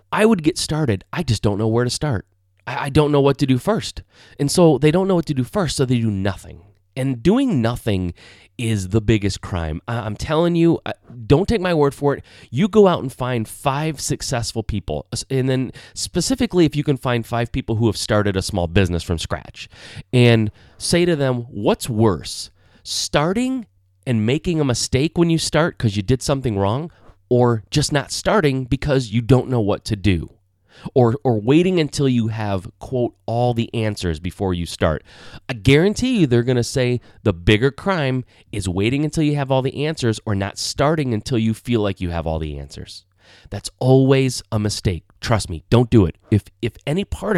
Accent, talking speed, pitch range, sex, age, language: American, 200 wpm, 100-140 Hz, male, 30-49, English